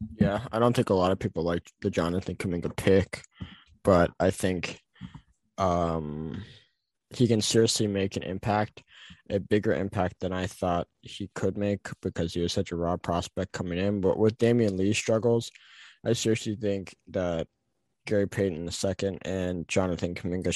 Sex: male